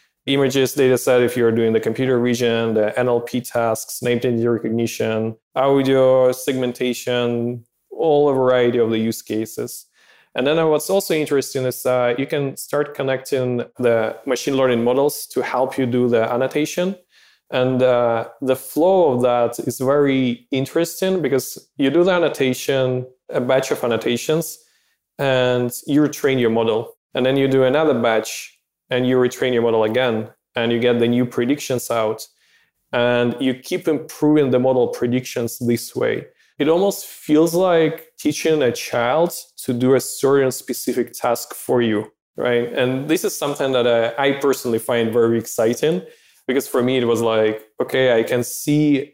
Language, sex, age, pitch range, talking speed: English, male, 20-39, 120-135 Hz, 160 wpm